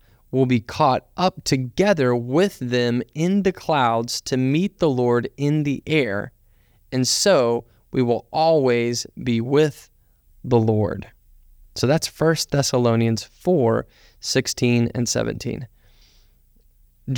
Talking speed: 120 wpm